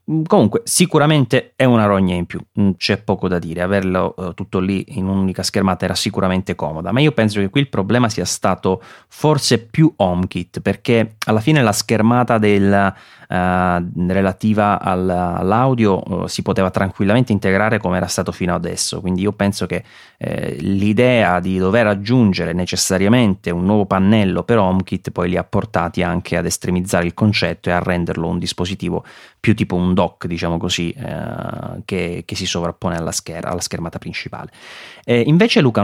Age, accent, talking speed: 30-49, native, 165 wpm